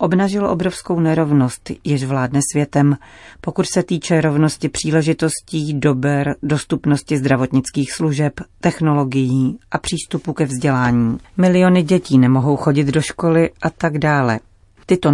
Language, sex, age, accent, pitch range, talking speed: Czech, female, 40-59, native, 135-165 Hz, 120 wpm